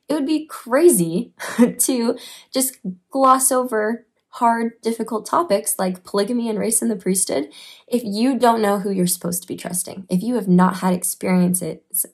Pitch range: 180-215 Hz